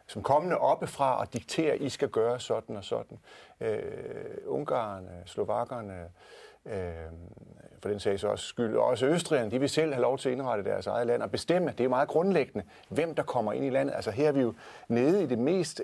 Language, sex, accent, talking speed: Danish, male, native, 210 wpm